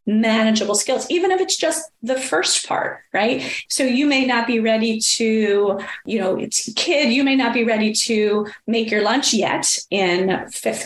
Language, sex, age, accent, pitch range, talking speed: English, female, 30-49, American, 195-260 Hz, 180 wpm